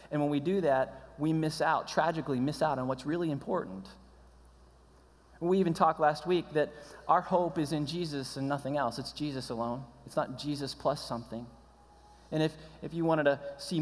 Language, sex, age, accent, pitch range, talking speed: English, male, 20-39, American, 125-160 Hz, 190 wpm